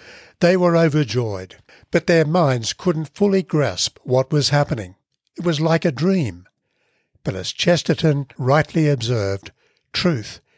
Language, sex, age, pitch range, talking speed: English, male, 60-79, 120-165 Hz, 130 wpm